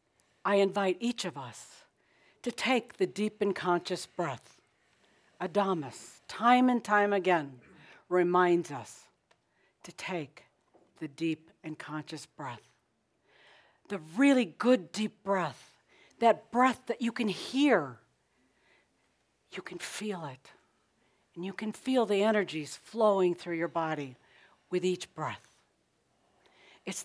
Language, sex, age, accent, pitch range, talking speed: English, female, 60-79, American, 155-220 Hz, 120 wpm